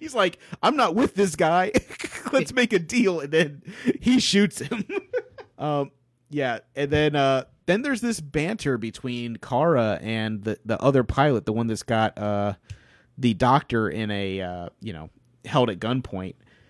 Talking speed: 170 wpm